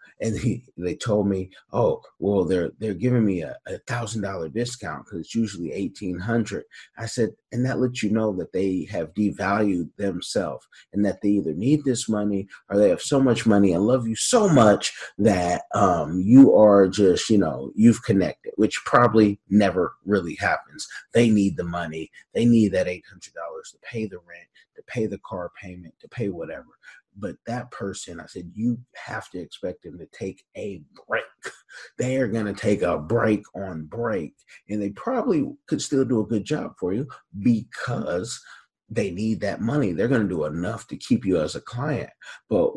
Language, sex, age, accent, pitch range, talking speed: English, male, 30-49, American, 95-120 Hz, 185 wpm